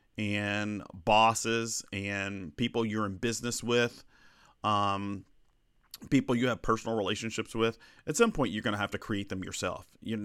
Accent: American